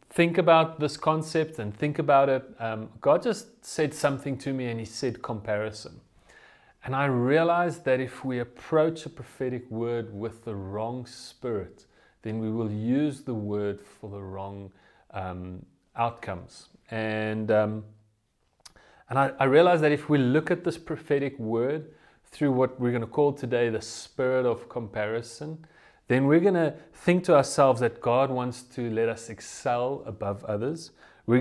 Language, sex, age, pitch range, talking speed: English, male, 30-49, 115-145 Hz, 165 wpm